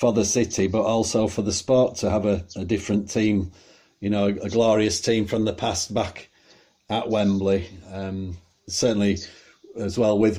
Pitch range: 100-115 Hz